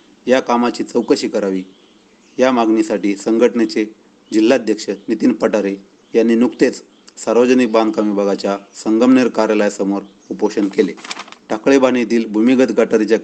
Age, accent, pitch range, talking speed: 40-59, native, 100-120 Hz, 105 wpm